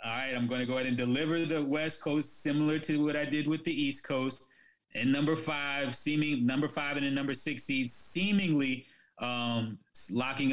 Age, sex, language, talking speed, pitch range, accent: 20-39, male, English, 200 wpm, 110-140 Hz, American